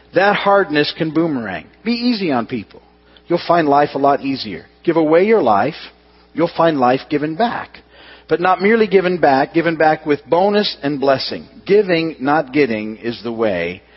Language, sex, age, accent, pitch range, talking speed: English, male, 50-69, American, 120-165 Hz, 170 wpm